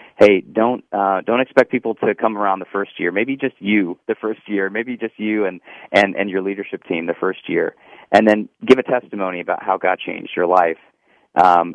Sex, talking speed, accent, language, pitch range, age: male, 215 wpm, American, English, 95-120 Hz, 20-39